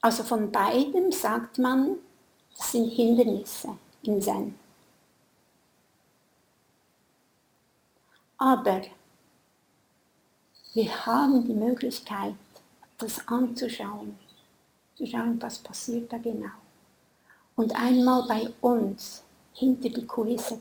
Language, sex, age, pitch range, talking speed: German, female, 60-79, 210-250 Hz, 85 wpm